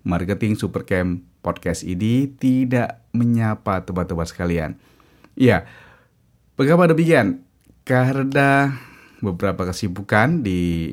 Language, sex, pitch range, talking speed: Indonesian, male, 90-125 Hz, 80 wpm